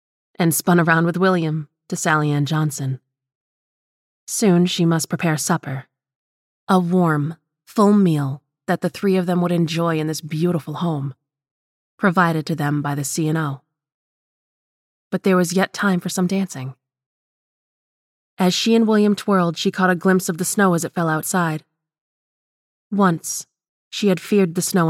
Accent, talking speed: American, 155 wpm